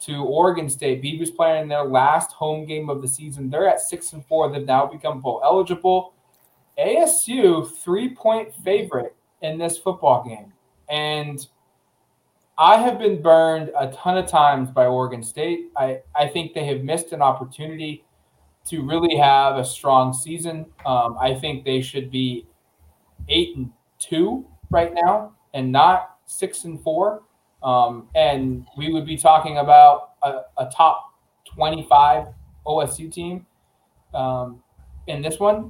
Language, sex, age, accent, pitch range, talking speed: English, male, 20-39, American, 130-175 Hz, 145 wpm